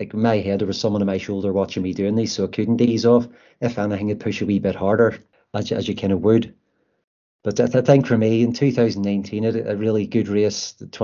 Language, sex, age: English, male, 30-49